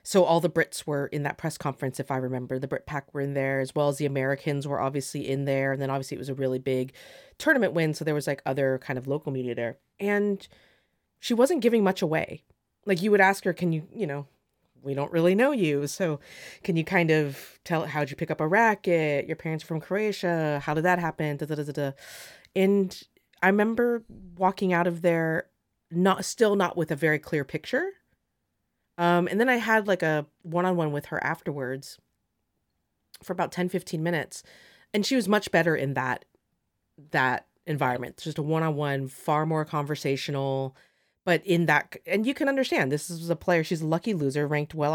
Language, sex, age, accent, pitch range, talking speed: English, female, 30-49, American, 140-185 Hz, 205 wpm